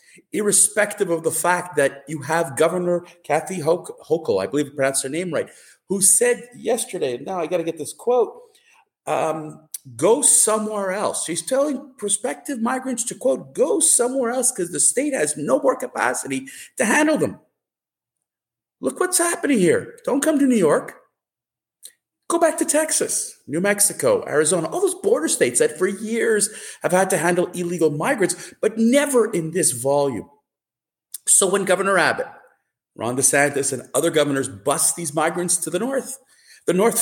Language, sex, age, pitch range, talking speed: English, male, 40-59, 160-260 Hz, 165 wpm